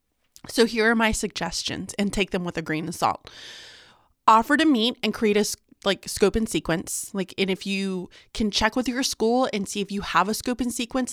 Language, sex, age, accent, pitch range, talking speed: English, female, 20-39, American, 190-235 Hz, 220 wpm